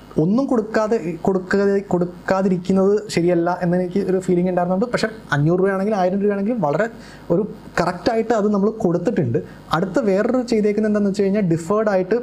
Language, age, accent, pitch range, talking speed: Malayalam, 20-39, native, 165-205 Hz, 135 wpm